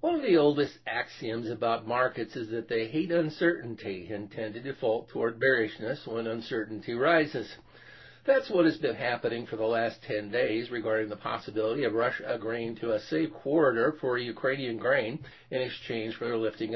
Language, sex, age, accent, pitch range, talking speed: English, male, 50-69, American, 115-145 Hz, 180 wpm